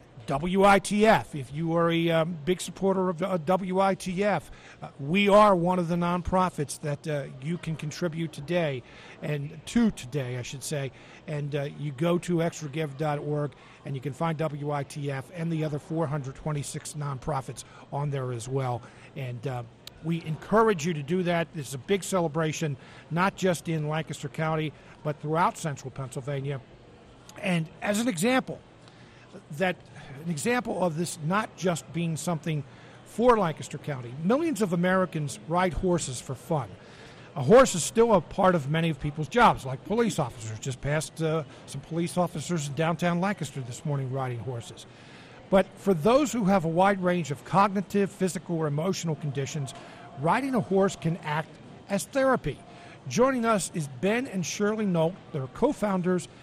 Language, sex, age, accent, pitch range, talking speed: English, male, 50-69, American, 145-185 Hz, 160 wpm